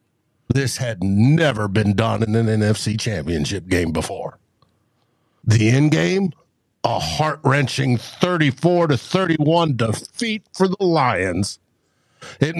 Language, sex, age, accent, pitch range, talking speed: English, male, 60-79, American, 115-190 Hz, 120 wpm